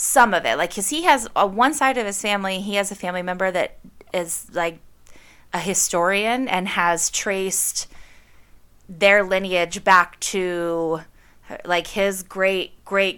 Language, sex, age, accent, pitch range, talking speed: English, female, 20-39, American, 170-195 Hz, 155 wpm